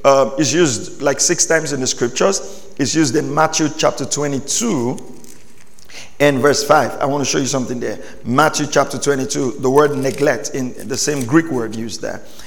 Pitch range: 130-155 Hz